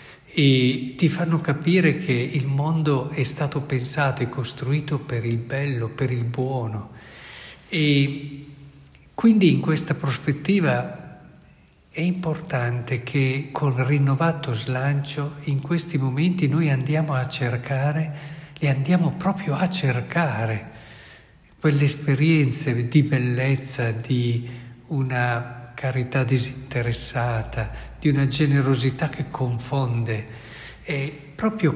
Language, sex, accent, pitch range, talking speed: Italian, male, native, 125-160 Hz, 105 wpm